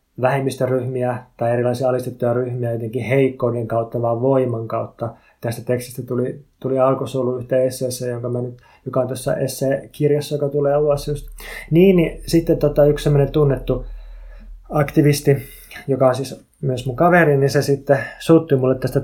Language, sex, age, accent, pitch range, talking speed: Finnish, male, 20-39, native, 125-140 Hz, 150 wpm